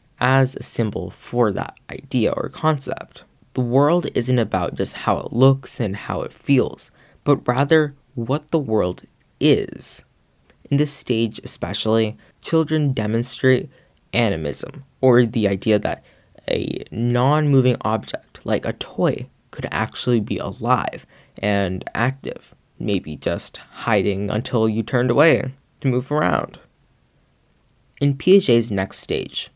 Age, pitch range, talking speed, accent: 10-29, 110-140 Hz, 130 wpm, American